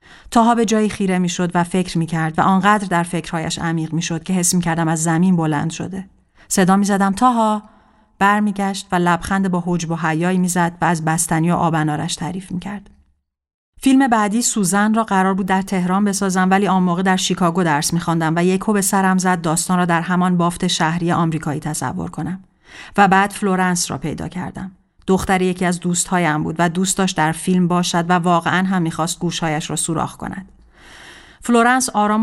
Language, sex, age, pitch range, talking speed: Persian, female, 40-59, 165-195 Hz, 185 wpm